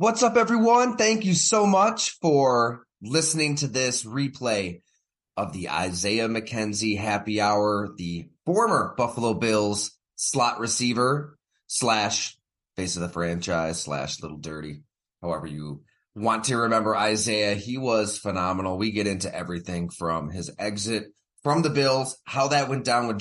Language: English